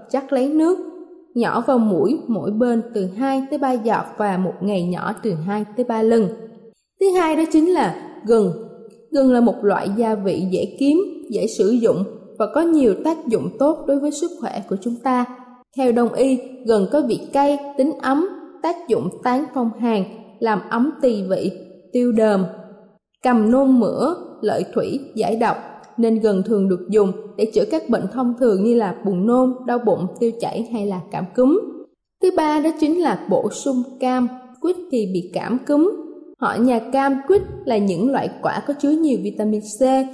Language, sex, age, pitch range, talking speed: Vietnamese, female, 20-39, 215-285 Hz, 190 wpm